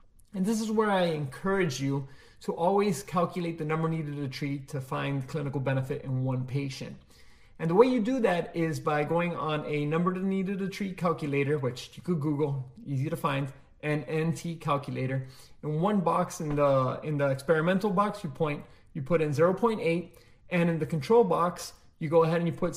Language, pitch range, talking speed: English, 140-180 Hz, 195 wpm